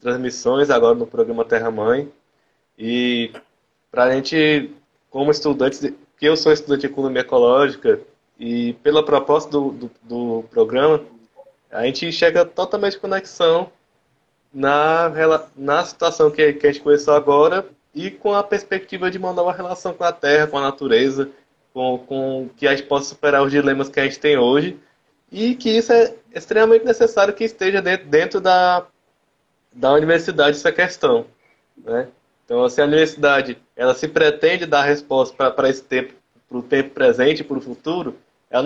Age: 20-39